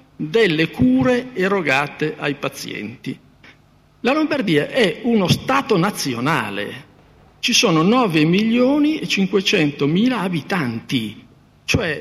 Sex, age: male, 50-69